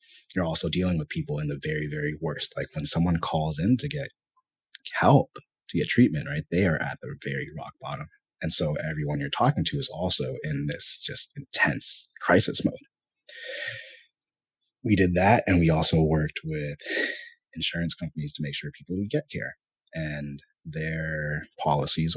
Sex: male